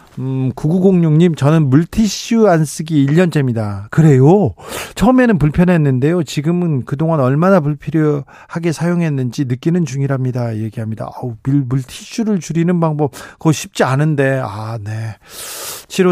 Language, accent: Korean, native